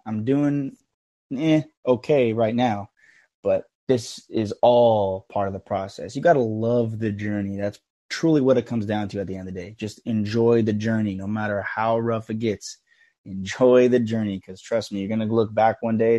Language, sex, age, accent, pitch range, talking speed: English, male, 20-39, American, 100-115 Hz, 210 wpm